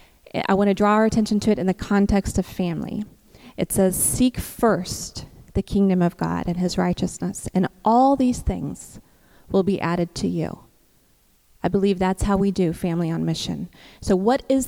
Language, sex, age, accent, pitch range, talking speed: English, female, 20-39, American, 180-205 Hz, 185 wpm